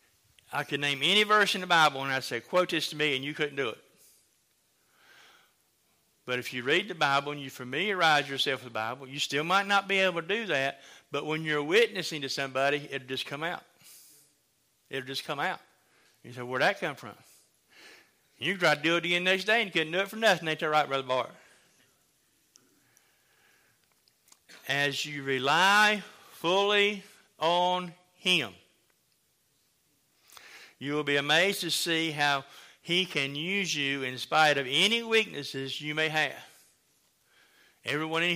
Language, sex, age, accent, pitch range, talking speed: English, male, 50-69, American, 135-175 Hz, 170 wpm